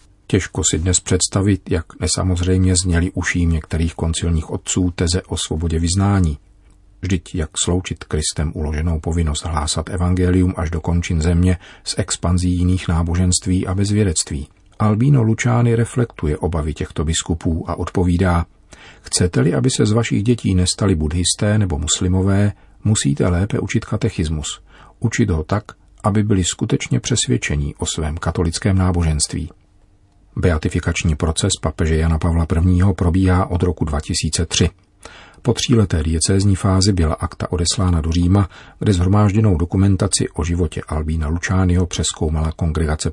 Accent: native